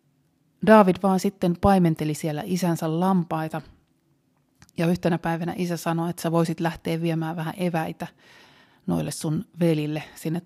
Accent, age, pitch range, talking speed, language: native, 30-49, 160-175 Hz, 130 wpm, Finnish